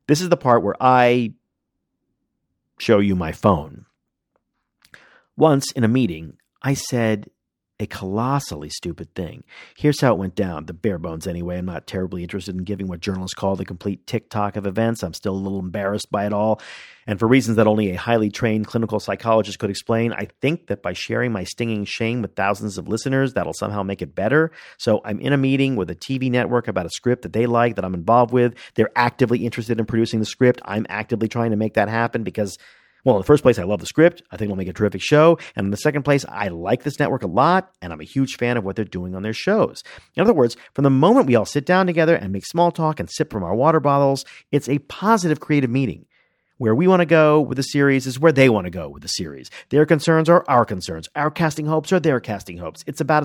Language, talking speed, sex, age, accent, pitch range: English, 235 wpm, male, 40-59, American, 100-145 Hz